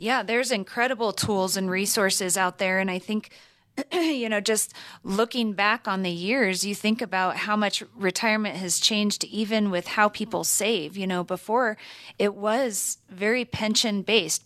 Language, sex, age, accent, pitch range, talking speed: English, female, 30-49, American, 180-215 Hz, 165 wpm